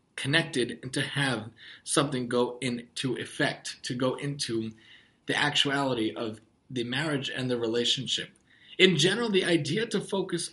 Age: 20-39